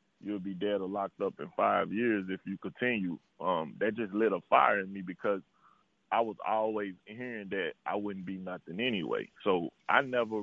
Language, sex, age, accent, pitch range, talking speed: English, male, 30-49, American, 95-110 Hz, 195 wpm